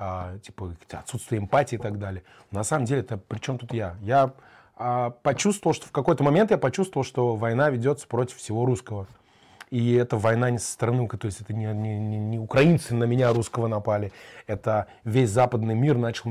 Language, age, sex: Russian, 20-39, male